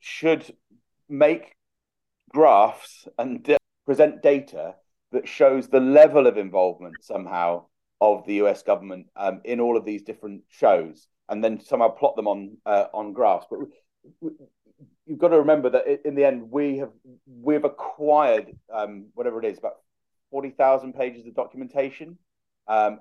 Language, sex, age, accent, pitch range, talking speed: English, male, 40-59, British, 105-145 Hz, 155 wpm